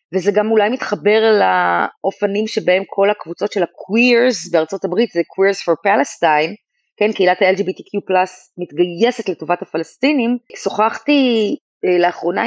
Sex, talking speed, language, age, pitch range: female, 115 wpm, Hebrew, 30-49, 180-215 Hz